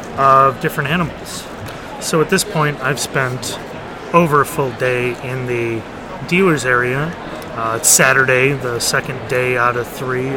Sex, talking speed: male, 150 wpm